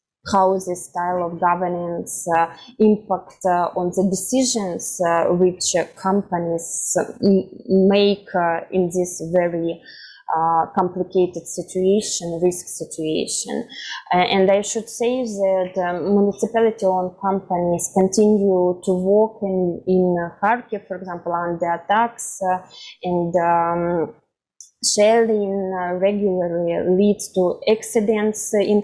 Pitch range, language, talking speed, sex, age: 180-210 Hz, German, 115 wpm, female, 20-39